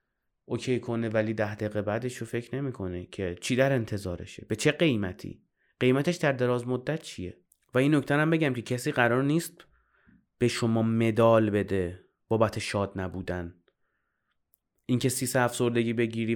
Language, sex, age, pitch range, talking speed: Persian, male, 30-49, 110-150 Hz, 150 wpm